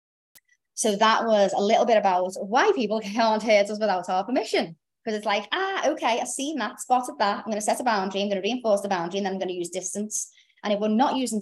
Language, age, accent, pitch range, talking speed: English, 30-49, British, 180-215 Hz, 260 wpm